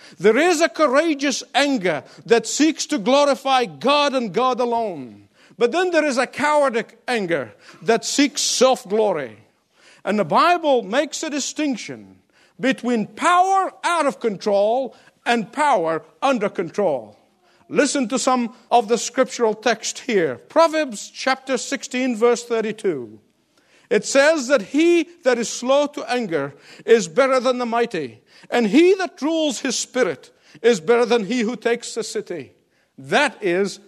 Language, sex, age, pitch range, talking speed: English, male, 50-69, 225-290 Hz, 145 wpm